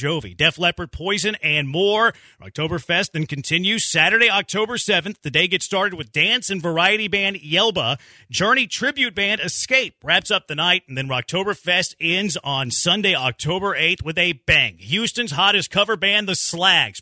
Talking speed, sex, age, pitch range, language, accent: 165 wpm, male, 30-49, 165-210 Hz, English, American